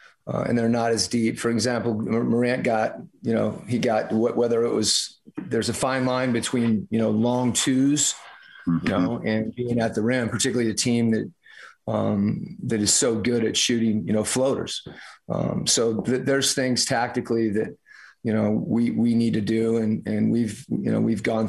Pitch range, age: 110-120 Hz, 30-49